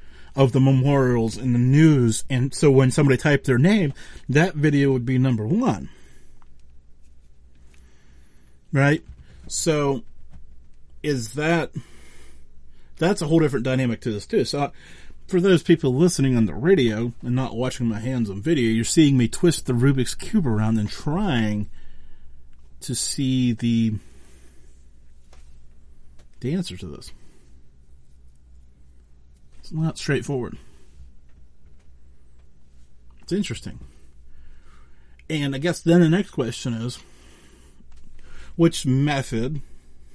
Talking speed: 120 wpm